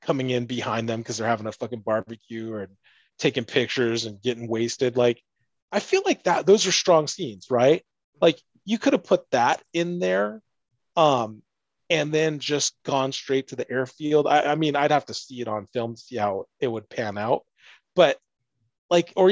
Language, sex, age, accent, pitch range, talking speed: English, male, 30-49, American, 115-145 Hz, 195 wpm